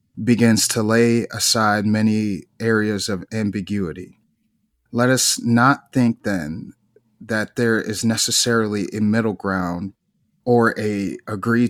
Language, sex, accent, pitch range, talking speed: English, male, American, 100-120 Hz, 120 wpm